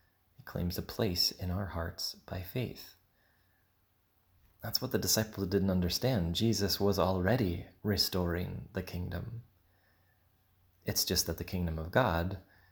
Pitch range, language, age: 85-100 Hz, English, 30-49